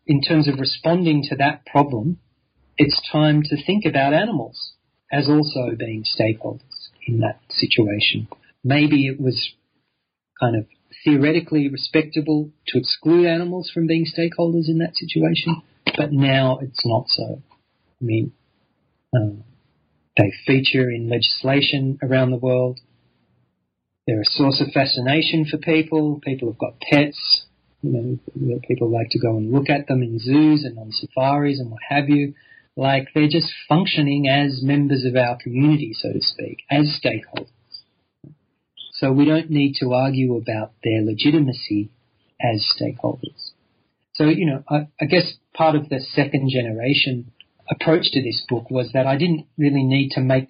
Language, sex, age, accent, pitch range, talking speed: English, male, 40-59, Australian, 120-150 Hz, 155 wpm